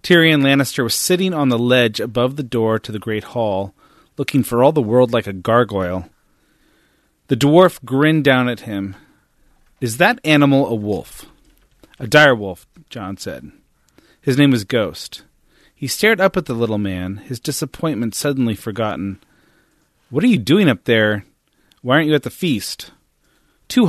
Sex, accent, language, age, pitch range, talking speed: male, American, English, 30-49, 105-145 Hz, 165 wpm